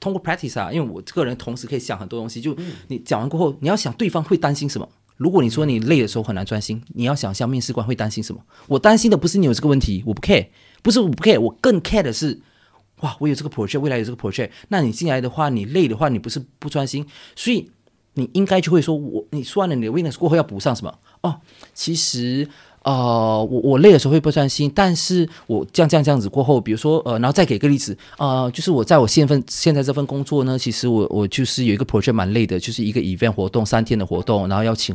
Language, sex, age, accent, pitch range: Chinese, male, 30-49, native, 105-145 Hz